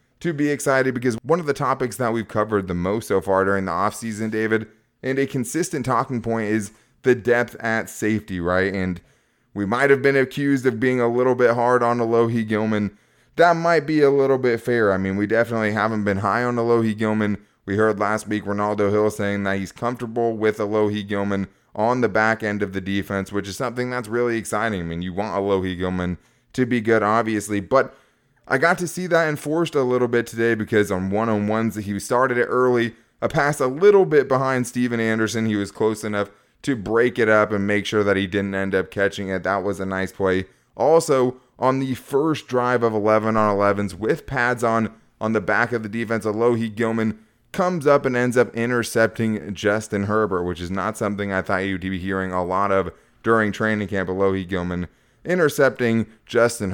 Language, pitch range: English, 100-125 Hz